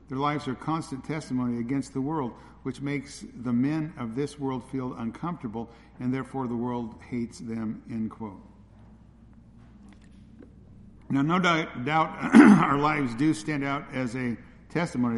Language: English